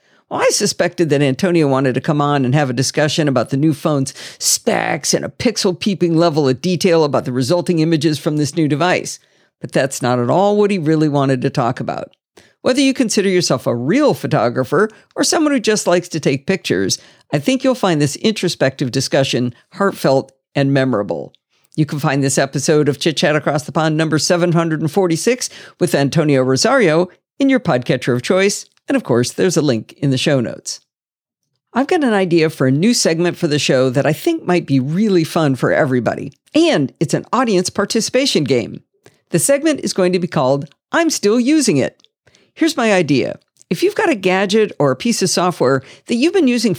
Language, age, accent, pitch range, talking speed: English, 50-69, American, 145-215 Hz, 200 wpm